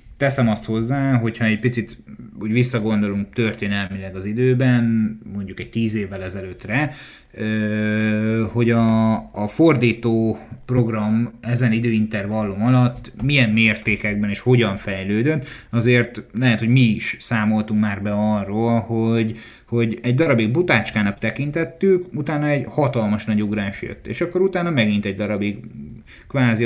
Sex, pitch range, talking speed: male, 105-125 Hz, 130 wpm